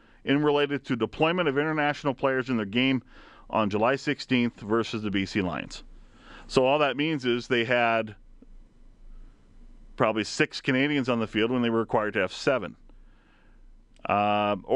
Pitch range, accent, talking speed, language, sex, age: 105-125 Hz, American, 155 wpm, English, male, 40-59